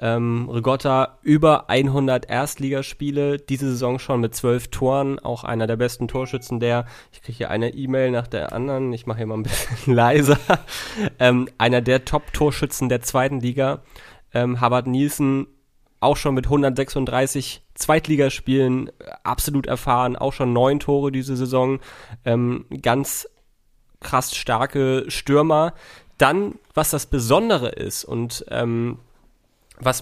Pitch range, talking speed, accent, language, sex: 120-145 Hz, 135 wpm, German, German, male